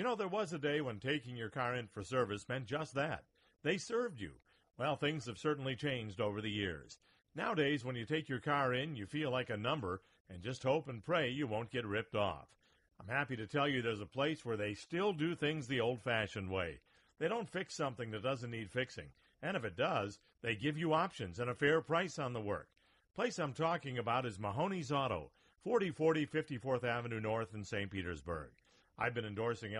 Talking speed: 215 wpm